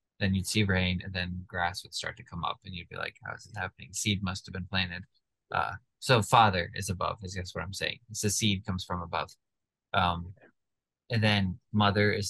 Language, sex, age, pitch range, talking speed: English, male, 20-39, 95-115 Hz, 225 wpm